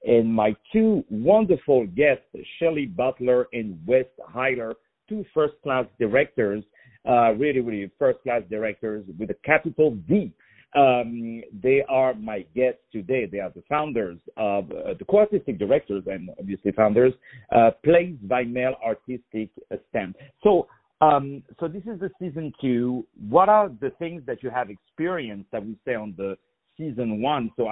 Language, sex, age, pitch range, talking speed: English, male, 50-69, 115-155 Hz, 150 wpm